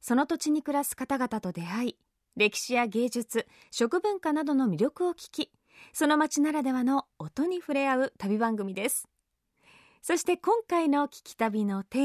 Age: 20-39